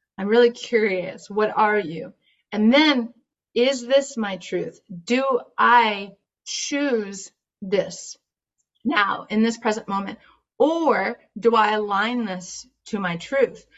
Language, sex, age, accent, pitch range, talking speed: English, female, 30-49, American, 185-230 Hz, 125 wpm